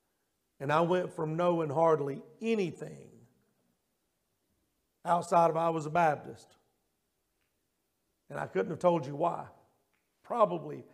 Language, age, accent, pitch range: English, 50-69, American, 170-220 Hz